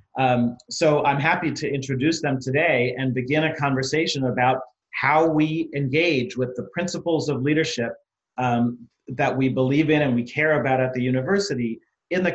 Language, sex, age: English, male, 40-59